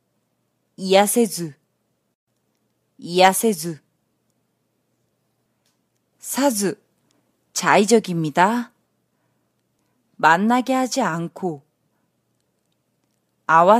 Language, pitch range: English, 160-225 Hz